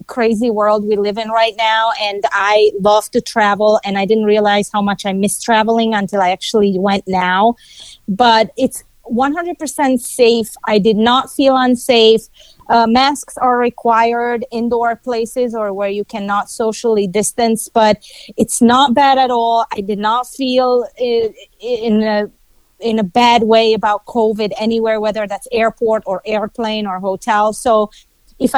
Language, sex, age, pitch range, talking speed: English, female, 30-49, 210-245 Hz, 160 wpm